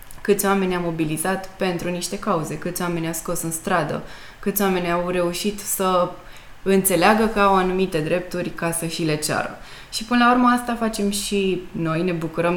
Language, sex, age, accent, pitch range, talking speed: Romanian, female, 20-39, native, 160-195 Hz, 180 wpm